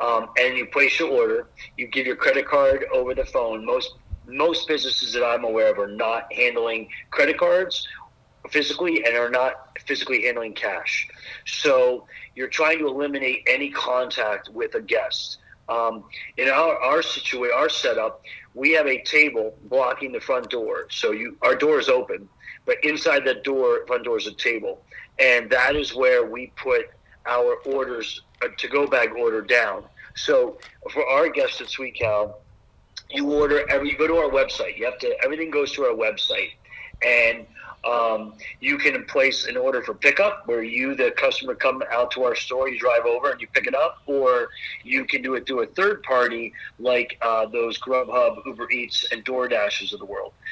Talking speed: 185 wpm